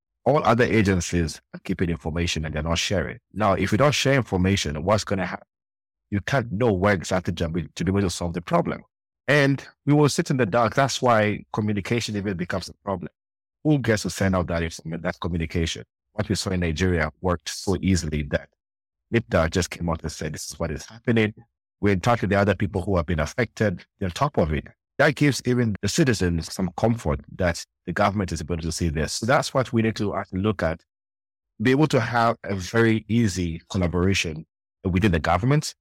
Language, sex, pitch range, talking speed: English, male, 85-110 Hz, 210 wpm